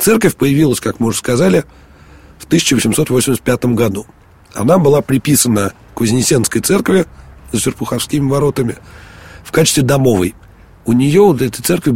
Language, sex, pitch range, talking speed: Russian, male, 110-145 Hz, 125 wpm